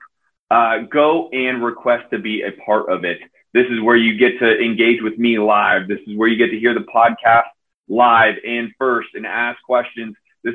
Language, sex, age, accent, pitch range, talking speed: English, male, 30-49, American, 105-135 Hz, 205 wpm